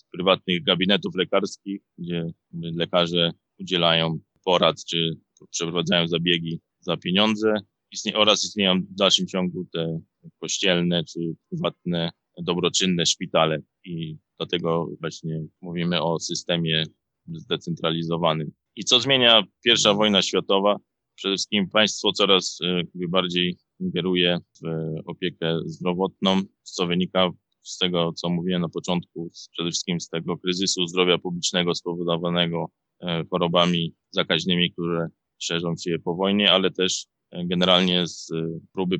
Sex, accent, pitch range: male, native, 85-90 Hz